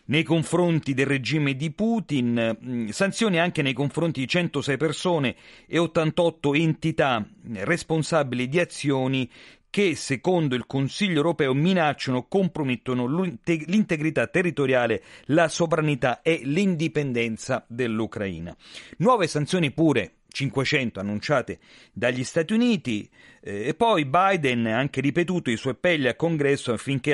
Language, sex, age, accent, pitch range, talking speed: Italian, male, 40-59, native, 120-165 Hz, 120 wpm